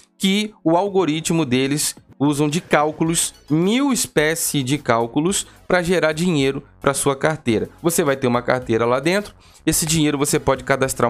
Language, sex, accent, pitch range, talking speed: Portuguese, male, Brazilian, 120-170 Hz, 155 wpm